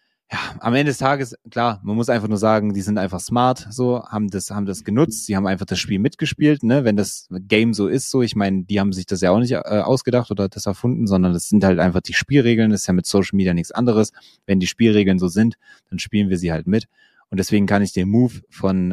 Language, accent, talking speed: German, German, 255 wpm